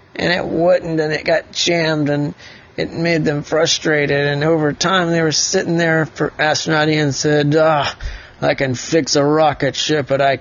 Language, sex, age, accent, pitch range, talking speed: English, male, 30-49, American, 120-145 Hz, 185 wpm